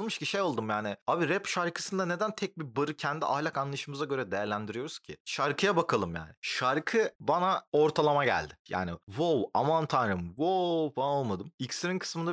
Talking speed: 160 wpm